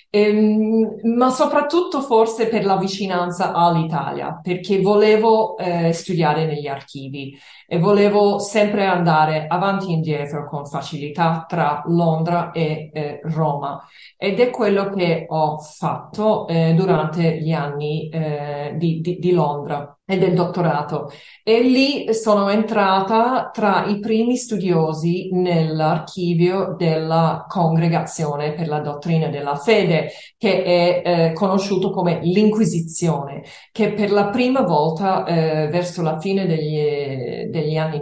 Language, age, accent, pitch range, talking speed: Italian, 40-59, native, 155-205 Hz, 125 wpm